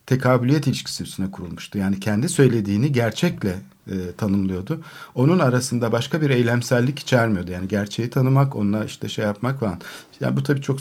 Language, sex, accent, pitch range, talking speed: Turkish, male, native, 110-140 Hz, 150 wpm